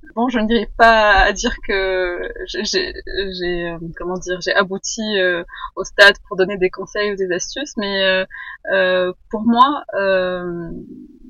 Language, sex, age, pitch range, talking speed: French, female, 20-39, 185-230 Hz, 165 wpm